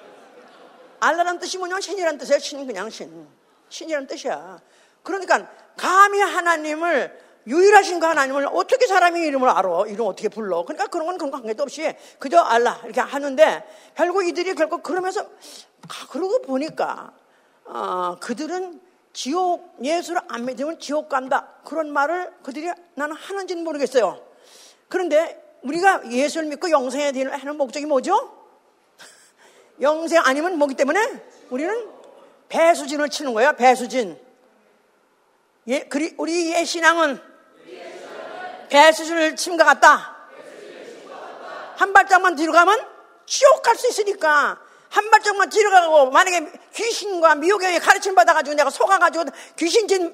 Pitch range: 290-385 Hz